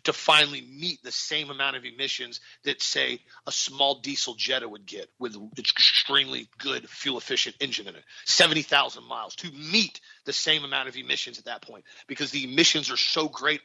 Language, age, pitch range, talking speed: English, 40-59, 130-175 Hz, 185 wpm